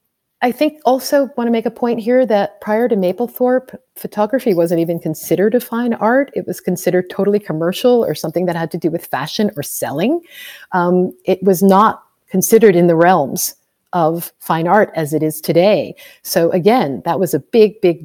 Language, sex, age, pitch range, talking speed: English, female, 40-59, 165-215 Hz, 190 wpm